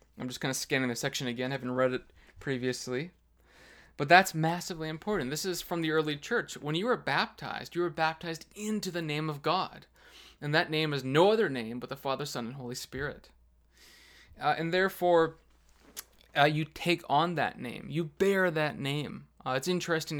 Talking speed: 190 wpm